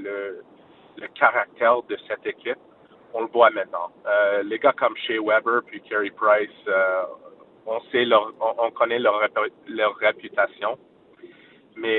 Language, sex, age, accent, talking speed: French, male, 30-49, Canadian, 140 wpm